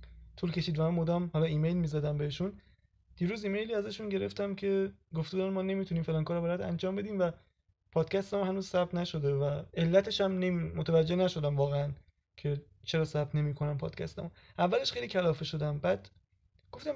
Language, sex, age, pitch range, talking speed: Persian, male, 20-39, 140-180 Hz, 165 wpm